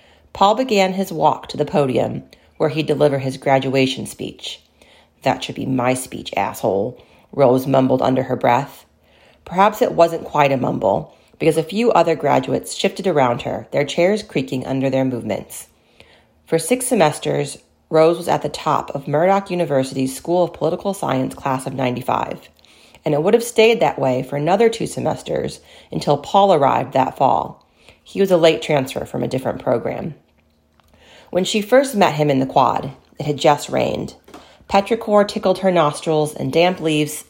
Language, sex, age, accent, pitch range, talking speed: English, female, 40-59, American, 135-180 Hz, 170 wpm